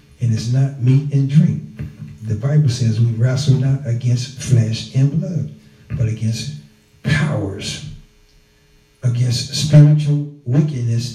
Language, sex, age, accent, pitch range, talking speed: English, male, 50-69, American, 115-145 Hz, 120 wpm